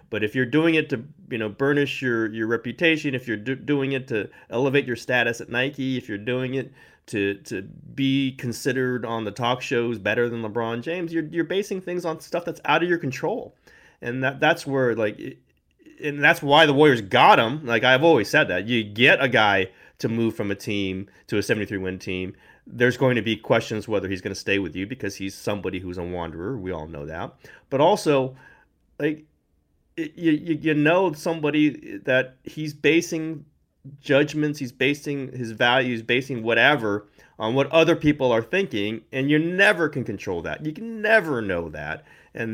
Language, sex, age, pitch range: English, male, 30-49, 105-150 Hz